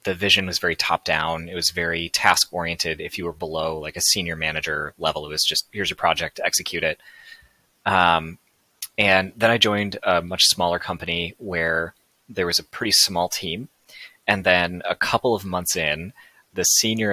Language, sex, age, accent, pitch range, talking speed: English, male, 20-39, American, 85-95 Hz, 180 wpm